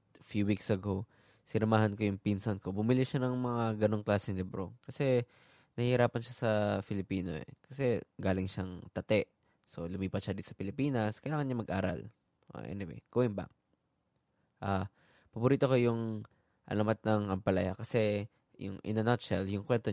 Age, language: 20-39, English